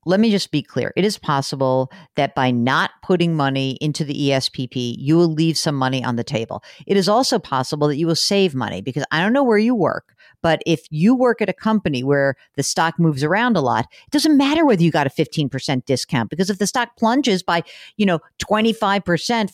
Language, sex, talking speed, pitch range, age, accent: English, female, 220 wpm, 160-230 Hz, 50-69, American